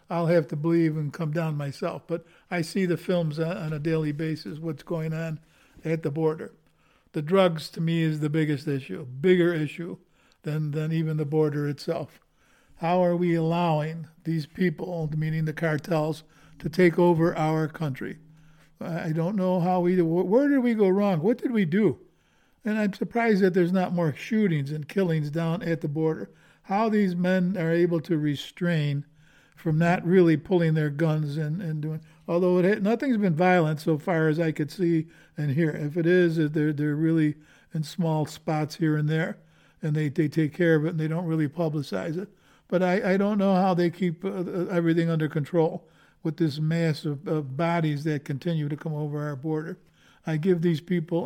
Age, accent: 60-79, American